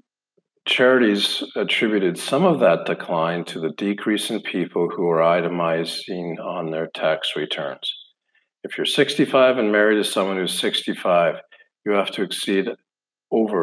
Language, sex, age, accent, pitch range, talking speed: English, male, 50-69, American, 90-105 Hz, 140 wpm